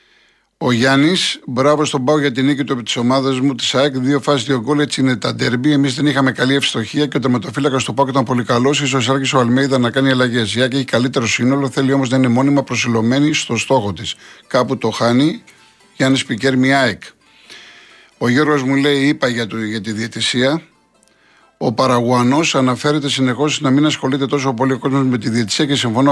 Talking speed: 195 wpm